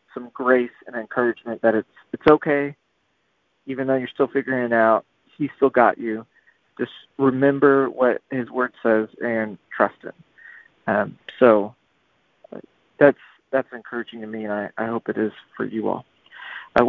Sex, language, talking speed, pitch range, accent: male, English, 160 wpm, 120-140 Hz, American